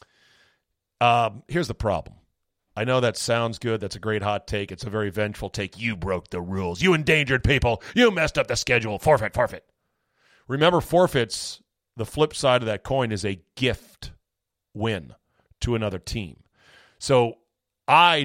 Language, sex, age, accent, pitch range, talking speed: English, male, 40-59, American, 100-130 Hz, 165 wpm